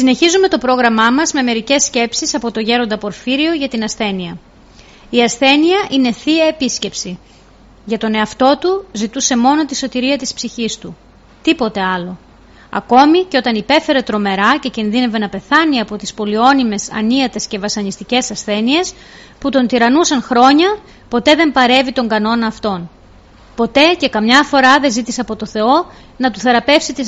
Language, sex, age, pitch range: Greek, female, 30-49, 215-280 Hz